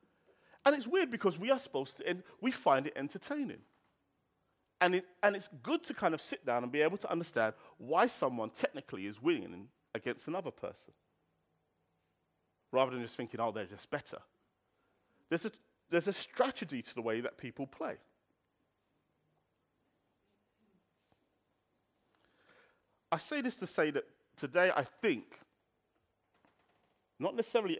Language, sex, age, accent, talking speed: English, male, 30-49, British, 140 wpm